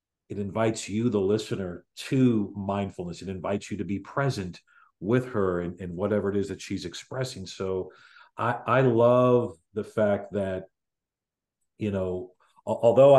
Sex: male